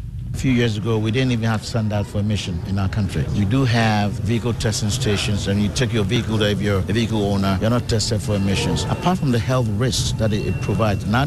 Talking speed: 245 wpm